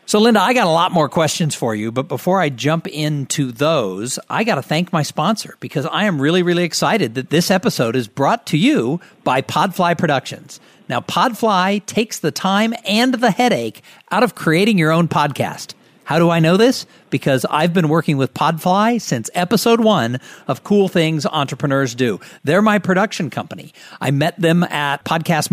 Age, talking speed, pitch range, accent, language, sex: 50-69, 190 wpm, 135-195 Hz, American, English, male